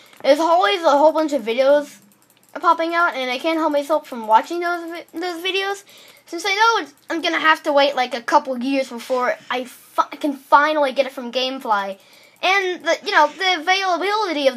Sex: female